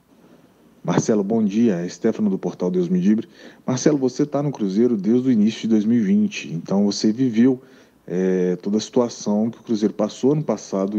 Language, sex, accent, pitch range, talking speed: Portuguese, male, Brazilian, 110-140 Hz, 175 wpm